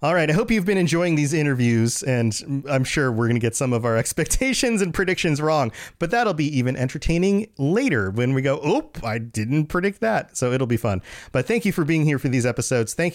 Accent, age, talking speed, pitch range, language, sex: American, 30-49, 235 wpm, 115-165 Hz, English, male